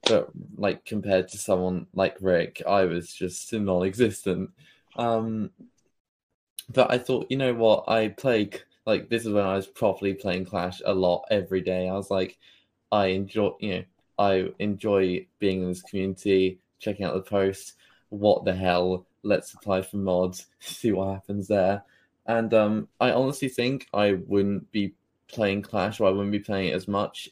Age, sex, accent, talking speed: 20-39, male, British, 170 wpm